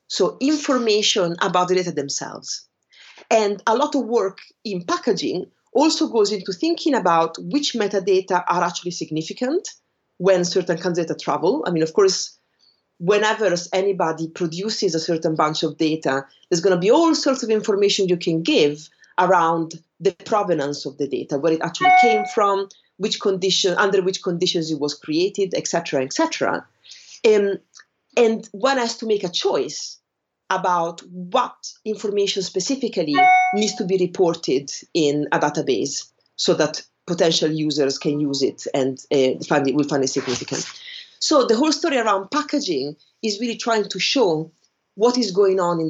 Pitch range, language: 160-235 Hz, English